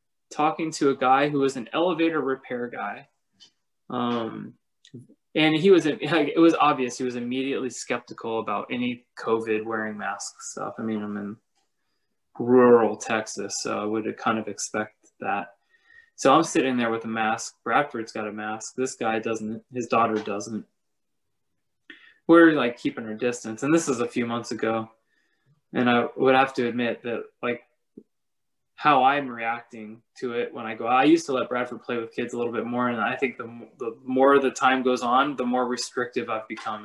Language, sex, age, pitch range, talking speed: English, male, 20-39, 110-125 Hz, 185 wpm